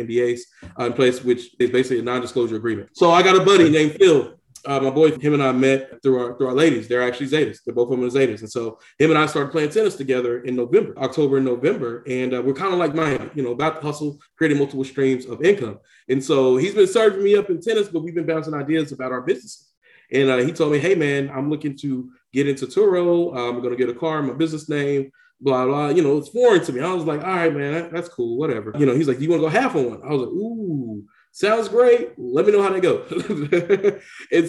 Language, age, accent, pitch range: English, 20-39, American, 130-160 Hz